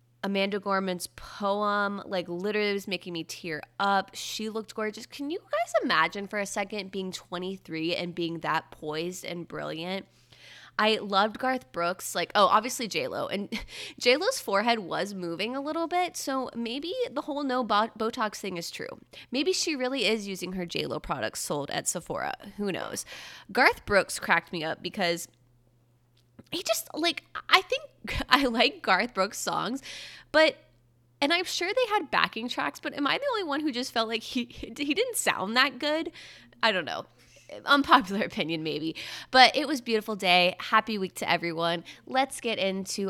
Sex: female